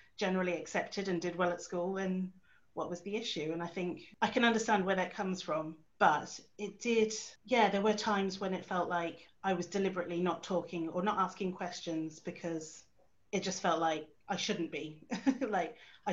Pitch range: 165-200 Hz